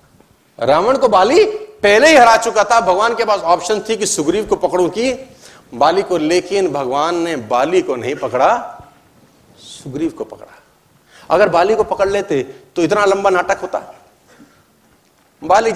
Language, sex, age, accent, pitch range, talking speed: Hindi, male, 40-59, native, 195-290 Hz, 155 wpm